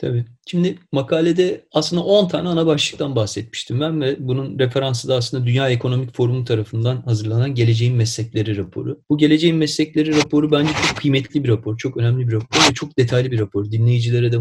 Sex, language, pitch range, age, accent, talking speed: male, Turkish, 120-150 Hz, 30-49, native, 180 wpm